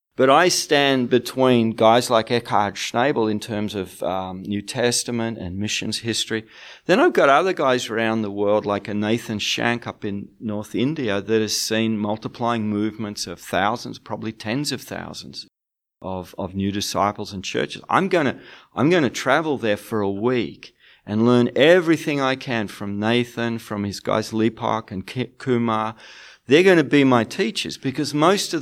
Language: English